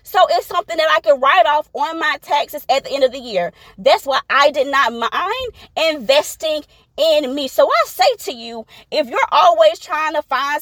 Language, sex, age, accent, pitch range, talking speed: English, female, 20-39, American, 270-335 Hz, 210 wpm